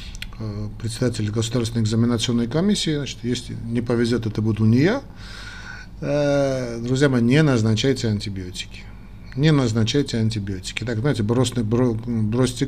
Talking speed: 115 wpm